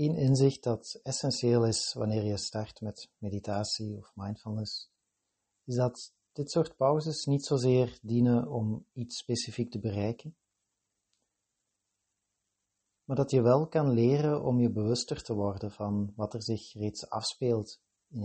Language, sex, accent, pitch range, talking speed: Dutch, male, Dutch, 105-125 Hz, 140 wpm